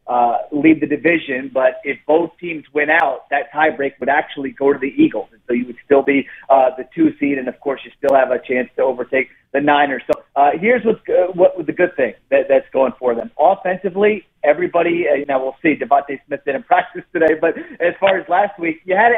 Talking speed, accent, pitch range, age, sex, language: 240 wpm, American, 140-175 Hz, 40-59, male, English